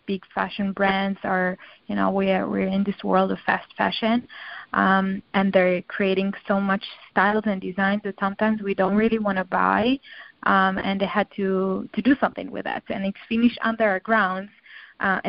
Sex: female